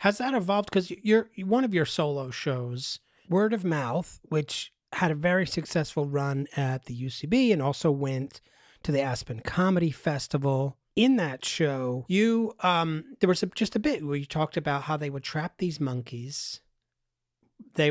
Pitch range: 140-180 Hz